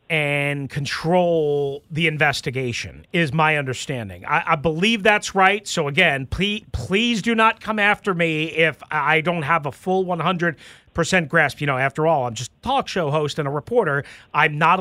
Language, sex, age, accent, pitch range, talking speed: English, male, 40-59, American, 140-195 Hz, 180 wpm